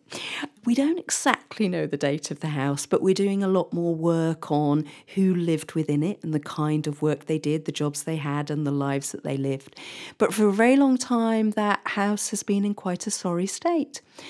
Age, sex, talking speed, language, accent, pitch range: 40-59, female, 225 wpm, English, British, 150-195 Hz